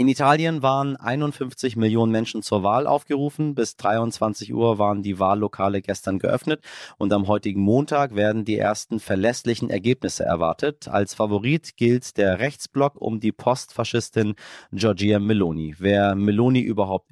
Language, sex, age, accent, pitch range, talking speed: German, male, 30-49, German, 110-145 Hz, 140 wpm